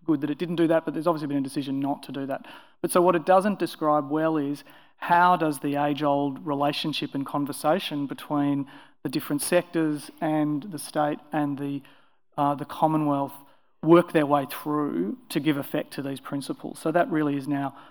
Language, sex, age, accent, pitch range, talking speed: English, male, 30-49, Australian, 140-155 Hz, 195 wpm